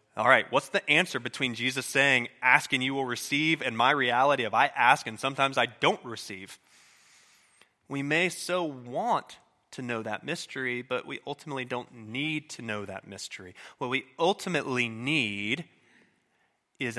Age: 30-49